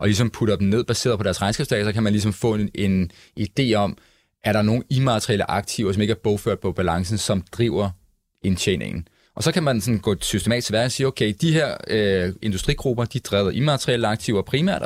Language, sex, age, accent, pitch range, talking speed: Danish, male, 20-39, native, 100-120 Hz, 210 wpm